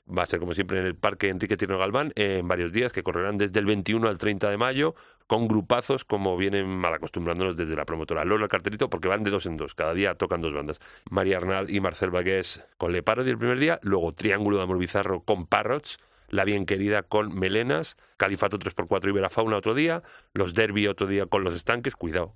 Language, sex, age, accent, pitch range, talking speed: Spanish, male, 40-59, Spanish, 90-110 Hz, 225 wpm